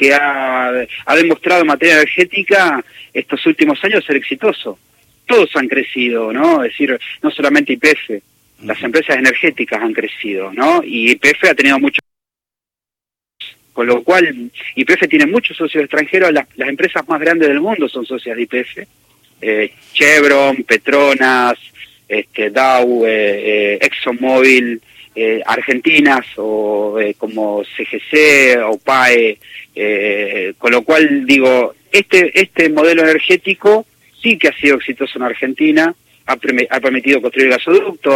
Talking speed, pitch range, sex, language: 140 wpm, 120-170 Hz, male, Spanish